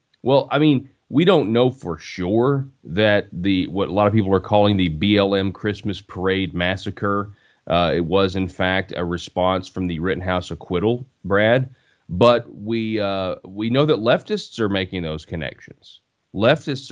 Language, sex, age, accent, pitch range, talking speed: English, male, 30-49, American, 90-115 Hz, 165 wpm